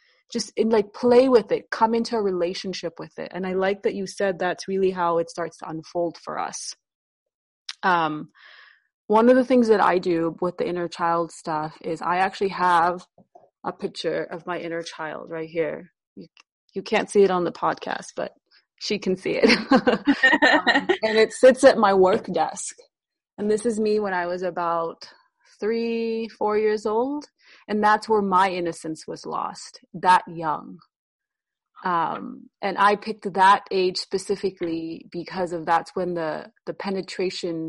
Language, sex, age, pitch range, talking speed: English, female, 30-49, 170-215 Hz, 170 wpm